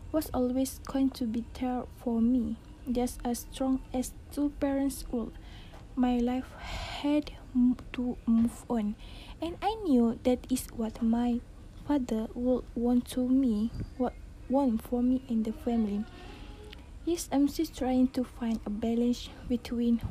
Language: Malay